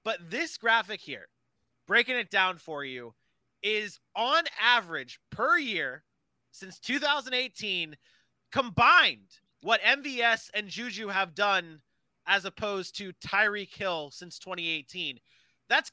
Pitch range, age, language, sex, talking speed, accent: 180-240 Hz, 30-49, English, male, 115 wpm, American